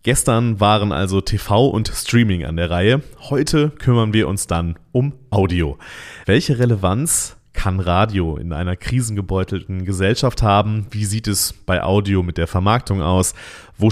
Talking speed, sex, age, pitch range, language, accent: 150 wpm, male, 30-49, 90-110 Hz, German, German